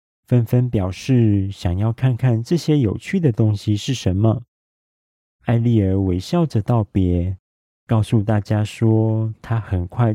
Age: 40-59